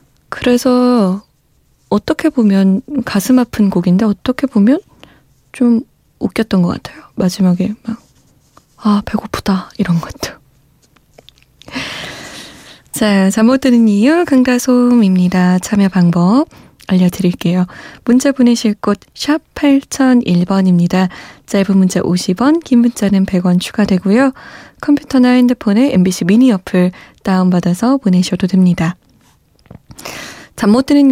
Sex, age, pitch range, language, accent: female, 20-39, 185-250 Hz, Korean, native